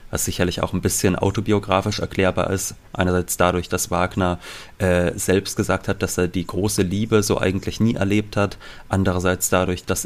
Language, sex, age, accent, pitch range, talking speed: German, male, 30-49, German, 90-110 Hz, 175 wpm